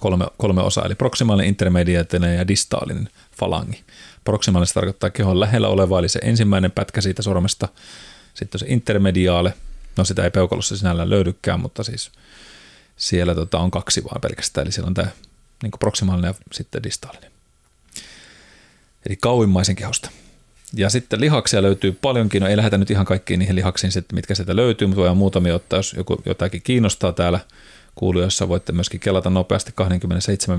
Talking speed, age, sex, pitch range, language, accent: 155 wpm, 30-49, male, 90-110 Hz, Finnish, native